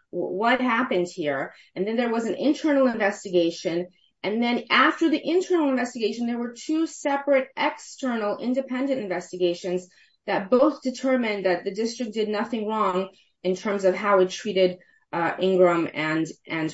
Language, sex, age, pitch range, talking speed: English, female, 30-49, 190-280 Hz, 150 wpm